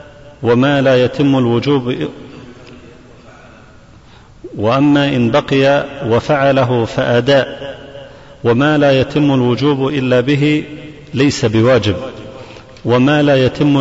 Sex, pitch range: male, 125-145 Hz